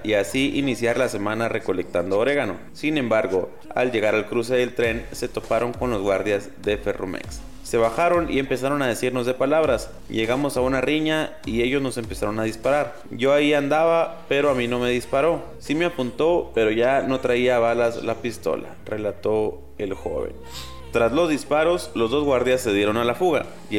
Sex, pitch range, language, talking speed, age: male, 105-135 Hz, Spanish, 185 wpm, 30-49